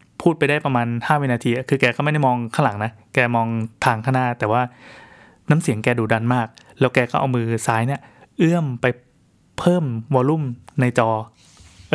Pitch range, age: 115-150 Hz, 20-39